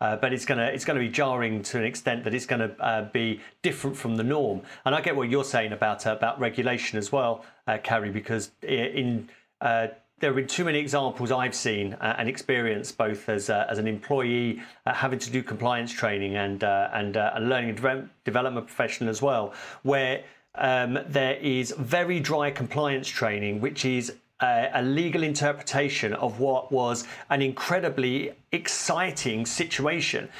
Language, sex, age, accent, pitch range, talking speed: English, male, 40-59, British, 115-155 Hz, 185 wpm